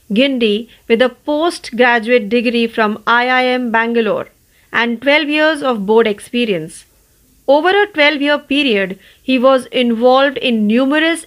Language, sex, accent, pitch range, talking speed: Marathi, female, native, 225-280 Hz, 135 wpm